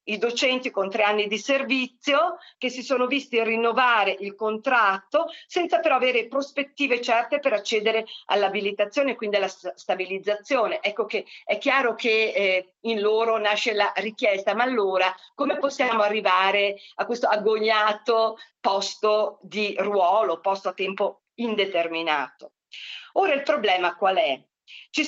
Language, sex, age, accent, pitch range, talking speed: Italian, female, 50-69, native, 195-275 Hz, 135 wpm